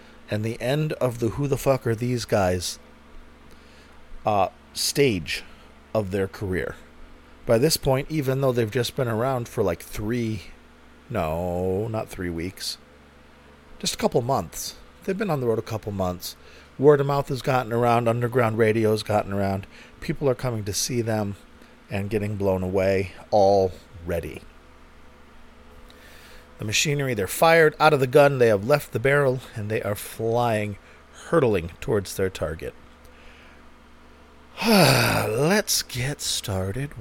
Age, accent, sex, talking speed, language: 40-59, American, male, 145 wpm, English